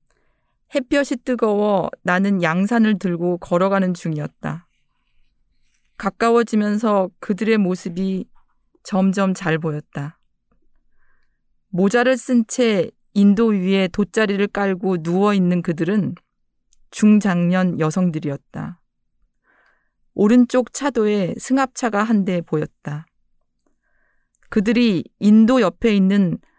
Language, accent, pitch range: Korean, native, 175-225 Hz